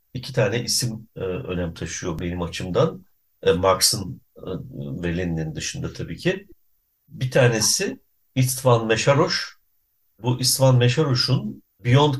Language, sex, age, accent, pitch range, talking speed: Turkish, male, 60-79, native, 110-135 Hz, 115 wpm